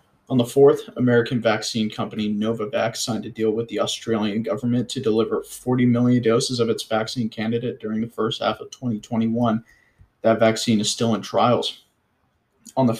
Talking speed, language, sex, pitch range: 170 wpm, English, male, 110-120 Hz